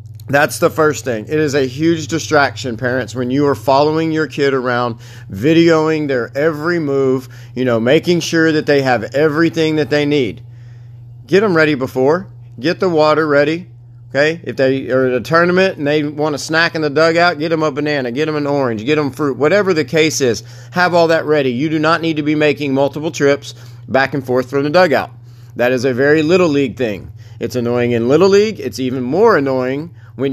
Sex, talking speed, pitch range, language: male, 210 wpm, 120-155 Hz, English